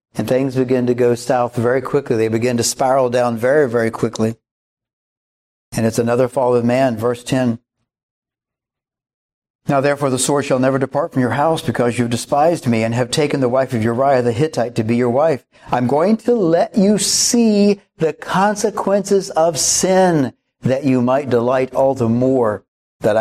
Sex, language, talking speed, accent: male, English, 180 wpm, American